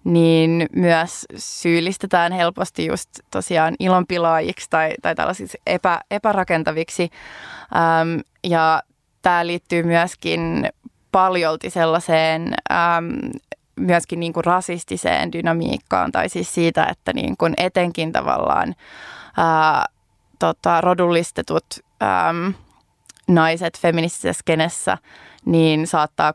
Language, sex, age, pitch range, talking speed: Finnish, female, 20-39, 165-180 Hz, 90 wpm